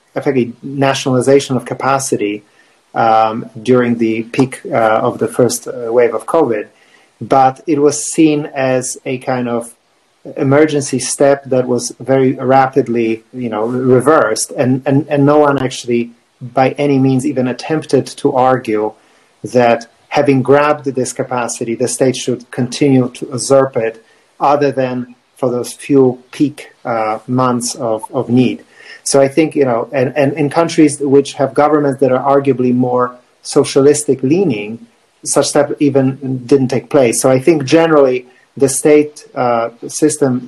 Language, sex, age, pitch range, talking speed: English, male, 40-59, 125-145 Hz, 150 wpm